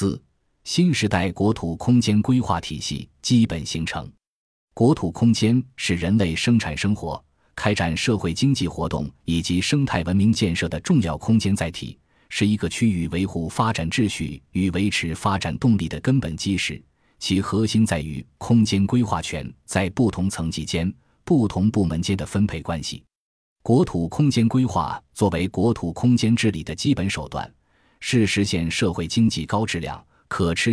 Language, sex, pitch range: Chinese, male, 85-115 Hz